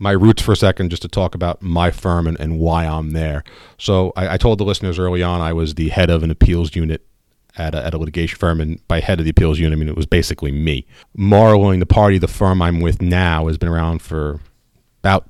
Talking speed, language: 250 wpm, English